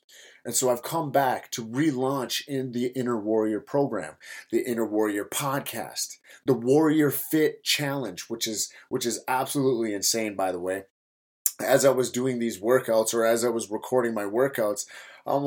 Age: 30-49